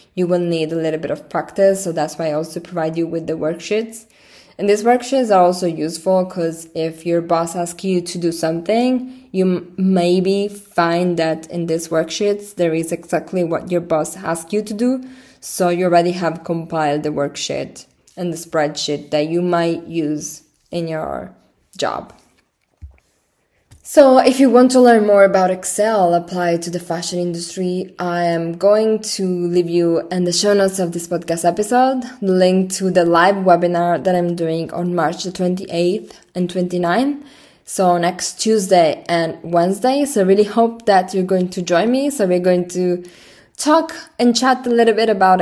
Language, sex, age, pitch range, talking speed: English, female, 20-39, 170-210 Hz, 180 wpm